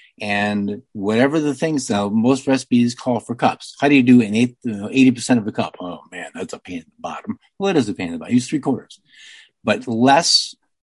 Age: 50-69